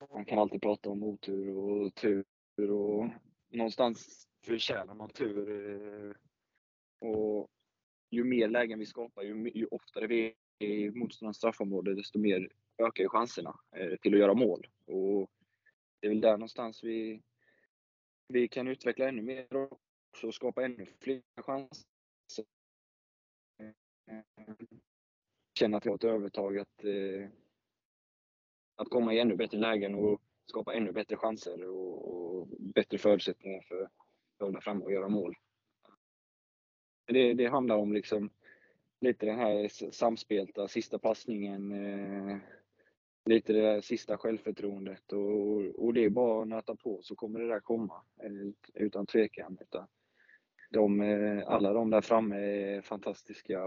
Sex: male